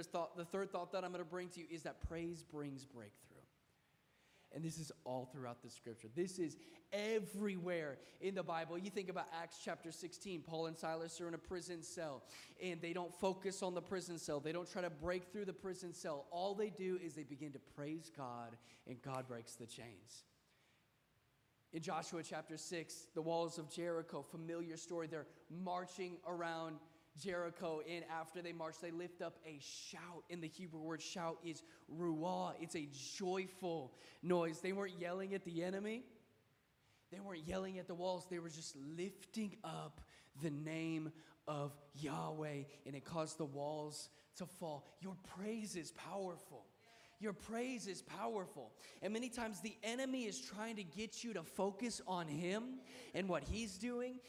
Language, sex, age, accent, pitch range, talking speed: English, male, 20-39, American, 150-190 Hz, 180 wpm